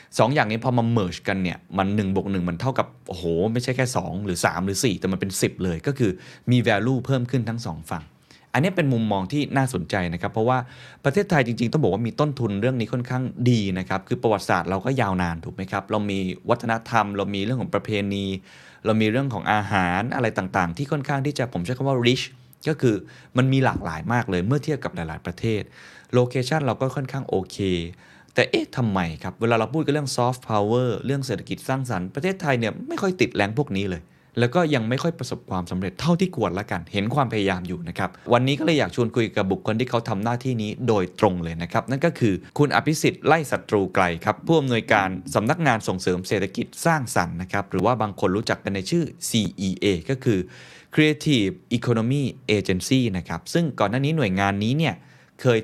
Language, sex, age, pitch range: Thai, male, 20-39, 95-130 Hz